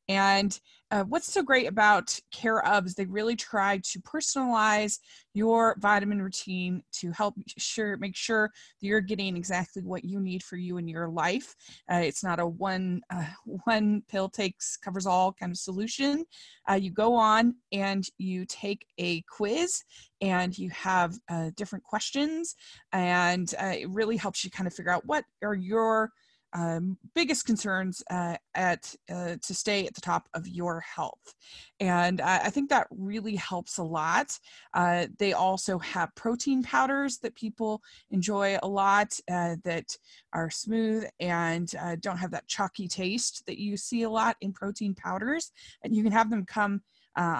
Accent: American